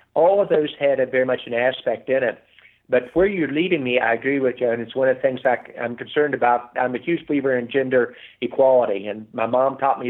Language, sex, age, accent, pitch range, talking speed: English, male, 50-69, American, 120-130 Hz, 250 wpm